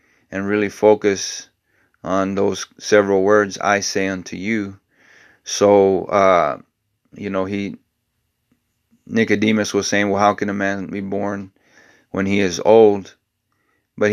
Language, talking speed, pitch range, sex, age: English, 130 wpm, 95-105 Hz, male, 30-49